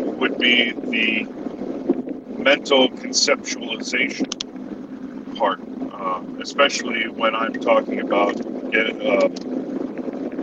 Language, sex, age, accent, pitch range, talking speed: English, male, 50-69, American, 260-275 Hz, 75 wpm